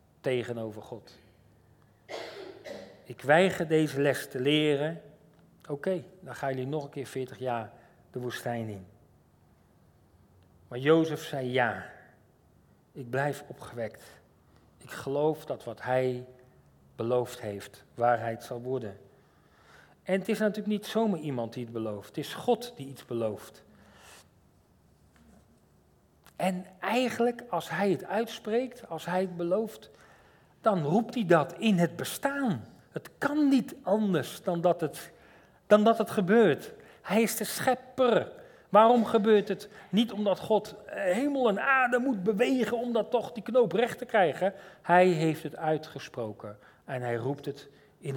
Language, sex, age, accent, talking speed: Dutch, male, 40-59, Dutch, 140 wpm